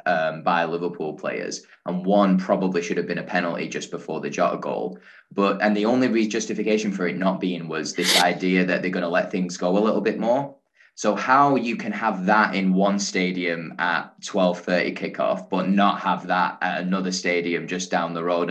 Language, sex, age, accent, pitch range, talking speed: English, male, 10-29, British, 90-100 Hz, 210 wpm